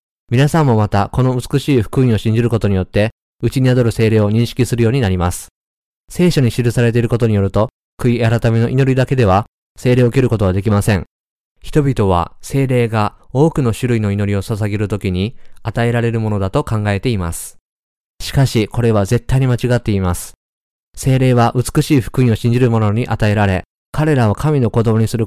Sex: male